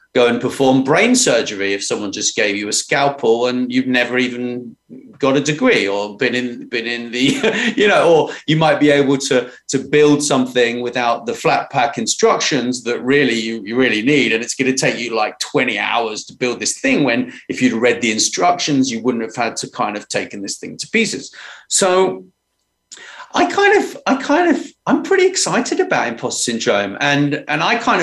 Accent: British